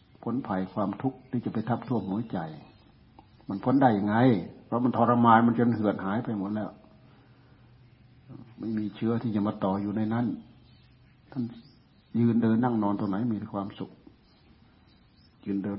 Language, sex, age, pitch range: Thai, male, 60-79, 105-125 Hz